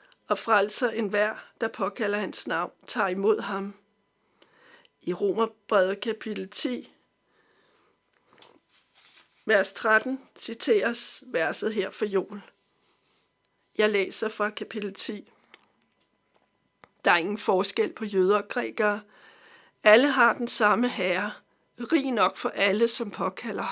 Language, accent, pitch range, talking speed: Danish, native, 205-250 Hz, 115 wpm